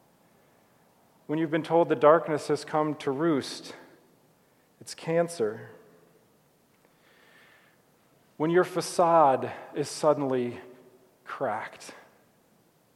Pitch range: 125-155 Hz